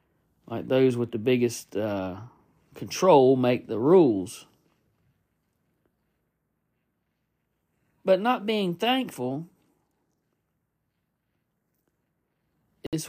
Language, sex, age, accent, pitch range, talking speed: English, male, 40-59, American, 125-160 Hz, 70 wpm